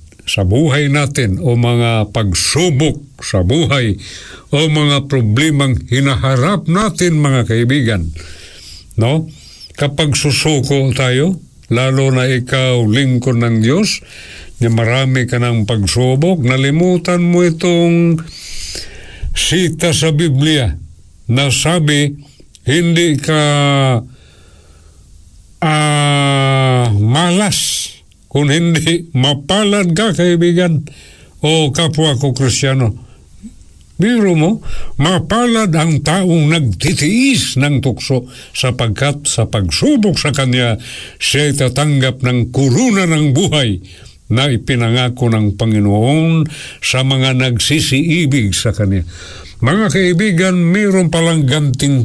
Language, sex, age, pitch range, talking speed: Filipino, male, 60-79, 115-160 Hz, 95 wpm